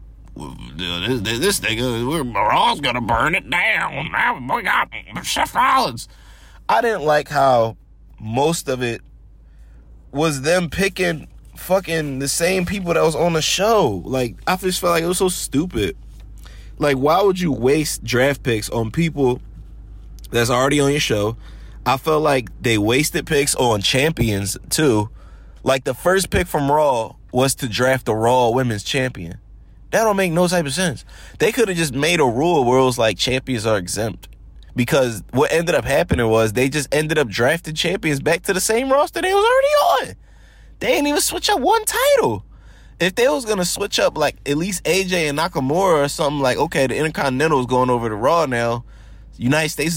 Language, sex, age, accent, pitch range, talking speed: English, male, 30-49, American, 115-170 Hz, 185 wpm